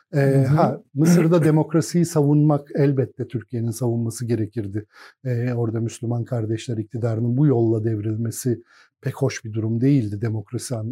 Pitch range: 125-165 Hz